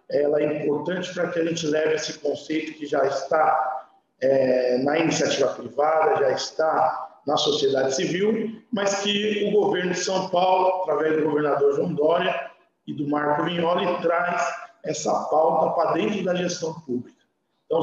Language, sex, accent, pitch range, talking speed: Portuguese, male, Brazilian, 150-200 Hz, 160 wpm